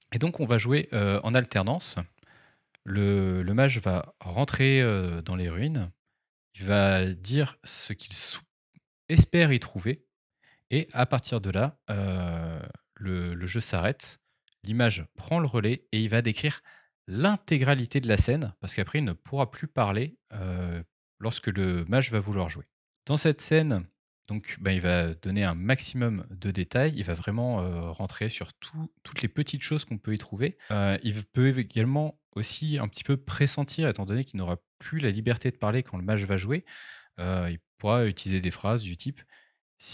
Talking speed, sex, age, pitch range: 180 wpm, male, 30-49, 95-130 Hz